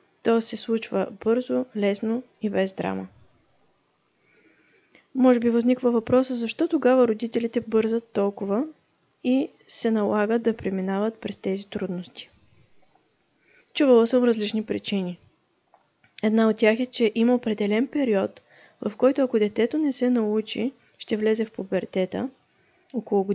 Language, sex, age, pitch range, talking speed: Bulgarian, female, 20-39, 210-250 Hz, 125 wpm